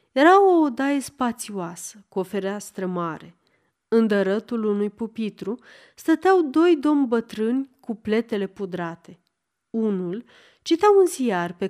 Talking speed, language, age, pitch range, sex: 125 wpm, Romanian, 30-49, 195-280 Hz, female